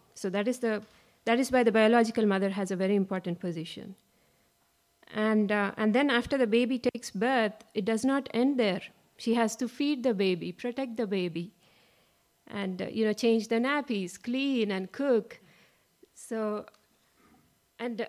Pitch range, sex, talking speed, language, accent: 200-235 Hz, female, 165 wpm, English, Indian